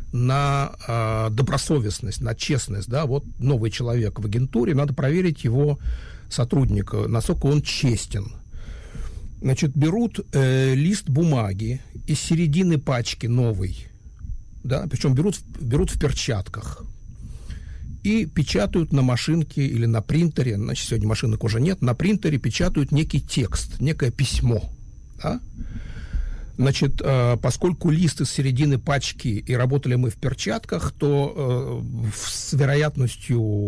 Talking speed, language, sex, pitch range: 125 wpm, Hebrew, male, 115-150 Hz